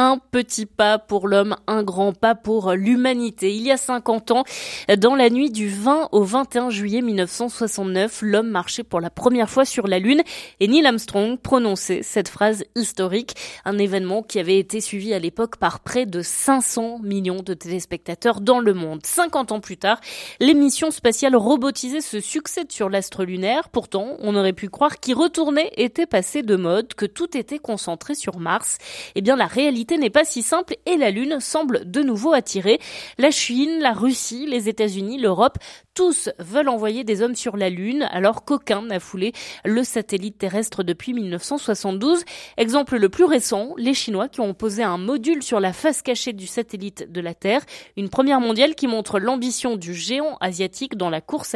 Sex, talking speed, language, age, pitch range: female, 185 wpm, French, 20-39, 200-270 Hz